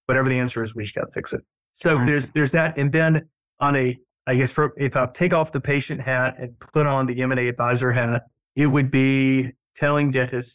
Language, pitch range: English, 125-150 Hz